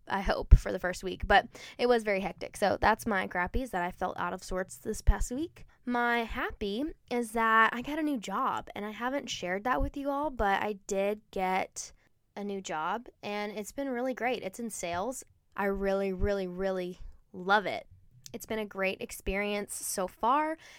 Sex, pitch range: female, 195-240 Hz